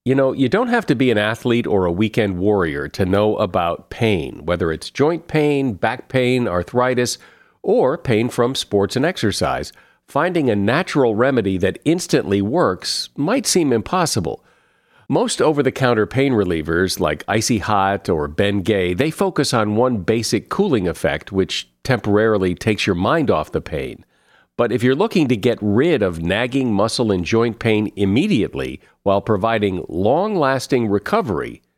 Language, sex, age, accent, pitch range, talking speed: English, male, 50-69, American, 100-130 Hz, 155 wpm